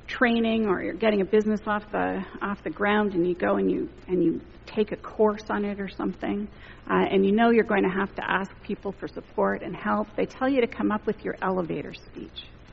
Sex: female